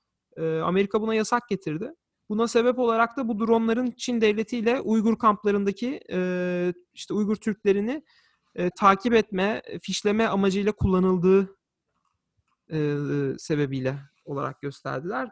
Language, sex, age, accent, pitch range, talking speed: Turkish, male, 40-59, native, 170-225 Hz, 100 wpm